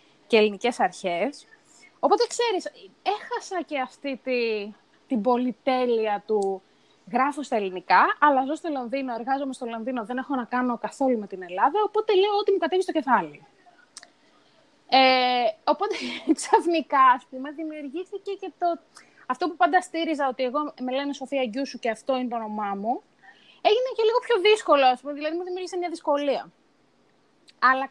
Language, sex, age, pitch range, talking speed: Greek, female, 20-39, 230-325 Hz, 155 wpm